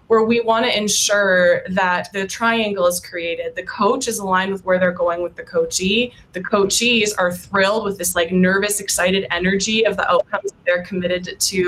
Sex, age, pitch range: female, 20-39, 180-230 Hz